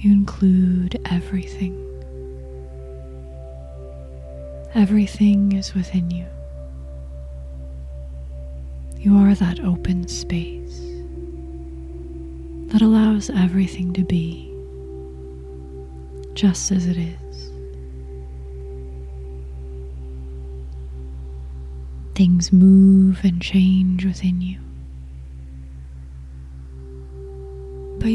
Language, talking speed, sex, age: English, 60 wpm, female, 20-39